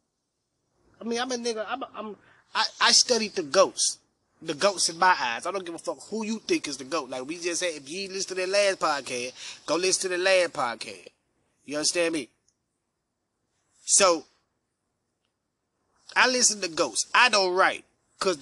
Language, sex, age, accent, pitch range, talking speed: English, male, 30-49, American, 190-250 Hz, 190 wpm